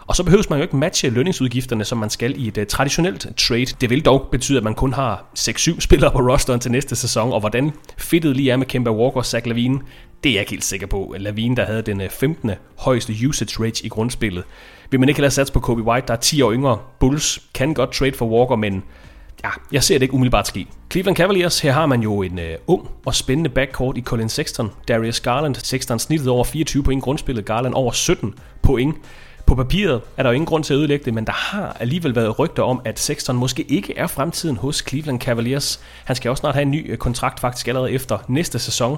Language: English